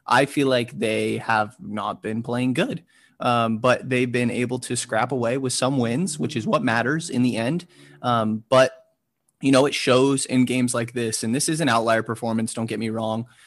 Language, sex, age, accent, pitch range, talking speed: English, male, 20-39, American, 115-130 Hz, 210 wpm